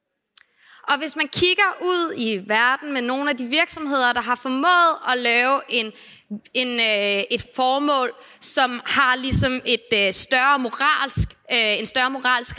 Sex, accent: female, native